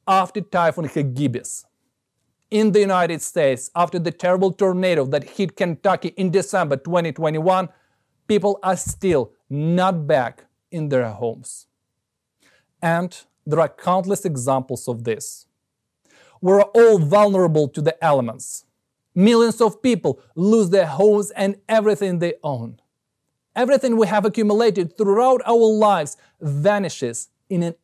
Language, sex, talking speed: English, male, 125 wpm